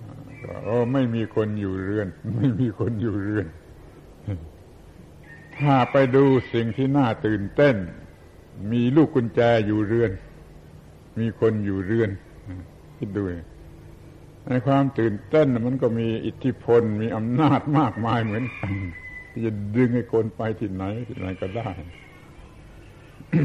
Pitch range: 100-125 Hz